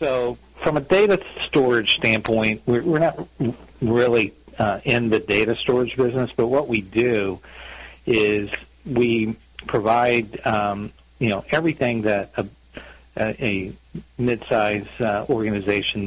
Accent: American